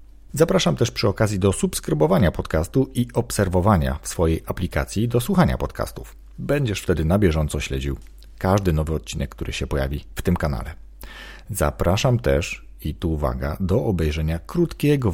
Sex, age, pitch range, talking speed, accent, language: male, 40-59, 80-110 Hz, 145 wpm, native, Polish